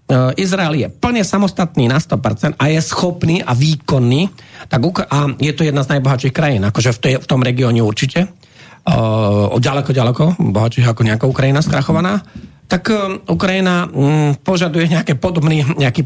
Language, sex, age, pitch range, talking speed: Slovak, male, 40-59, 125-165 Hz, 150 wpm